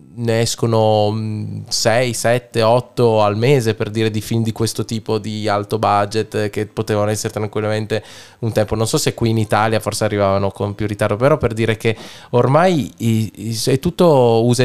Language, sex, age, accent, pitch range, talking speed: Italian, male, 20-39, native, 110-125 Hz, 170 wpm